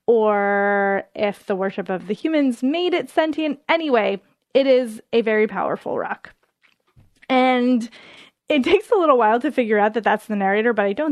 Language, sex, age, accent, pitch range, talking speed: English, female, 20-39, American, 205-260 Hz, 180 wpm